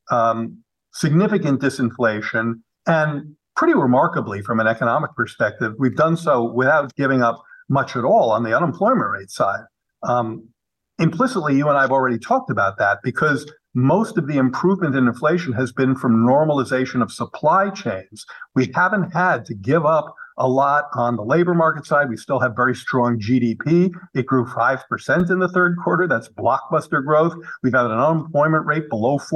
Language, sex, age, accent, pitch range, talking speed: English, male, 50-69, American, 125-165 Hz, 170 wpm